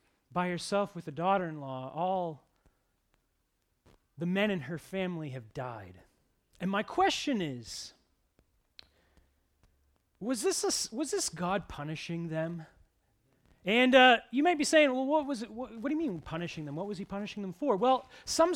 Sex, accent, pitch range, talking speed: male, American, 165-260 Hz, 160 wpm